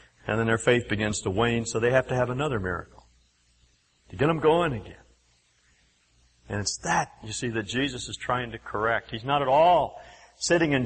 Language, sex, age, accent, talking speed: English, male, 50-69, American, 200 wpm